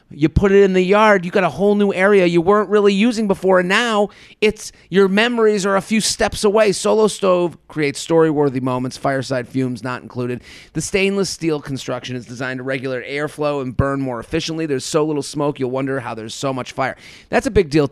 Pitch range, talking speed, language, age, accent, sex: 125-170 Hz, 215 wpm, English, 30-49, American, male